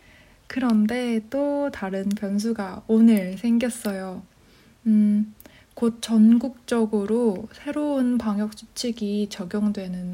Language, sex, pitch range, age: Korean, female, 200-230 Hz, 20-39